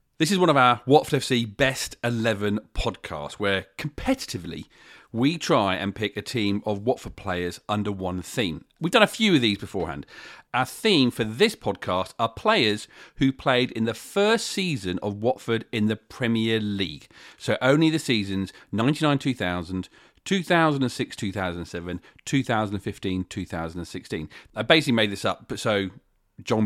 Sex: male